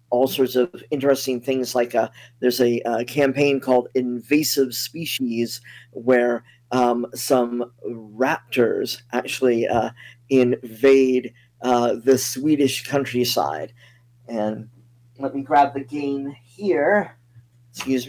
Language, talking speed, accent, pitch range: English, 110 wpm, American, 120-140 Hz